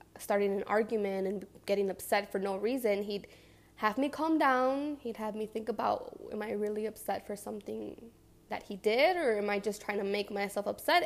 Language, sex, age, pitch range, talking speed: English, female, 10-29, 200-230 Hz, 200 wpm